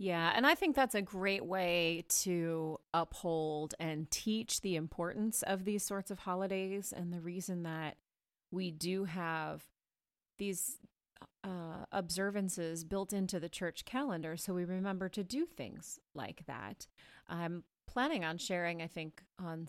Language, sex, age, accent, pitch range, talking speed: English, female, 30-49, American, 155-190 Hz, 150 wpm